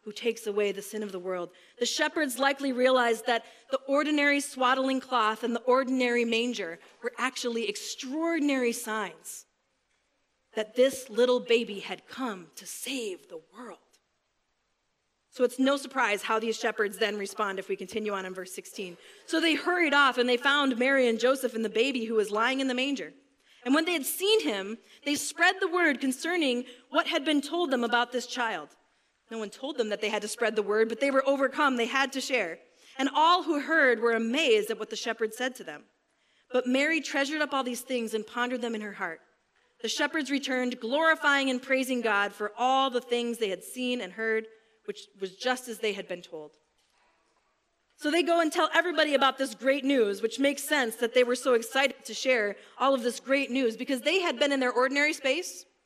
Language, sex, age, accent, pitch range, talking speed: English, female, 30-49, American, 225-280 Hz, 205 wpm